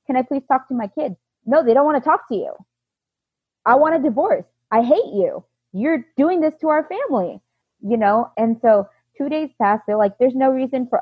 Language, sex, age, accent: English, female, 20-39, American